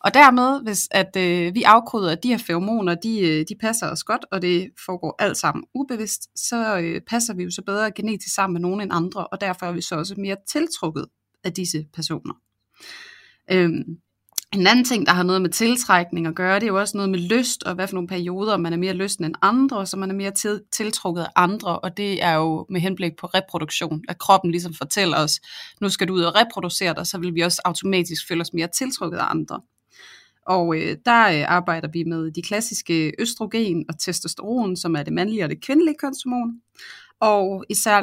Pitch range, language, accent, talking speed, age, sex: 170-215 Hz, Danish, native, 205 wpm, 30-49, female